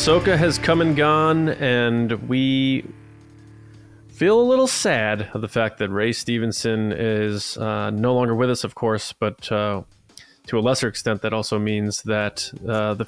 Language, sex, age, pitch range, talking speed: English, male, 20-39, 110-140 Hz, 170 wpm